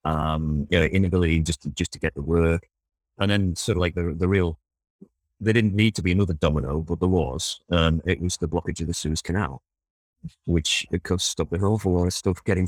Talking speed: 235 wpm